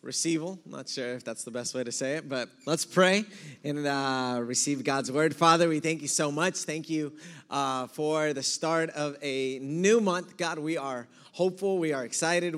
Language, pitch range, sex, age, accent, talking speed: Spanish, 130-165 Hz, male, 20-39, American, 200 wpm